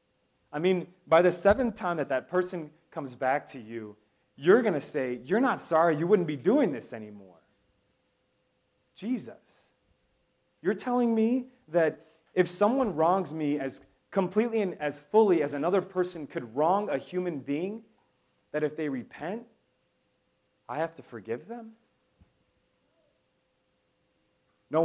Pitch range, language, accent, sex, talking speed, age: 135-185 Hz, English, American, male, 140 wpm, 30-49